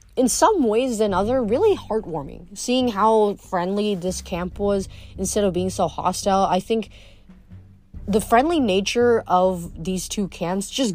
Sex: female